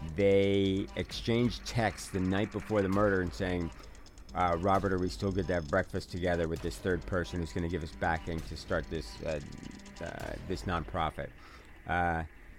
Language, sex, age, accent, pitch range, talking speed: English, male, 50-69, American, 80-95 Hz, 180 wpm